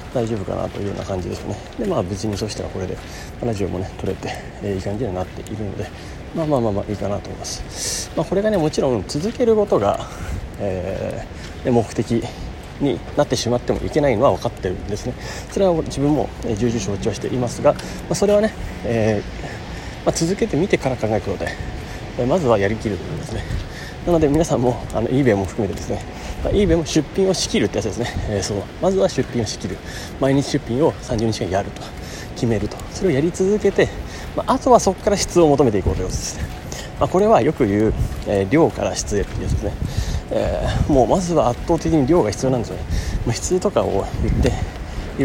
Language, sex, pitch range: Japanese, male, 100-160 Hz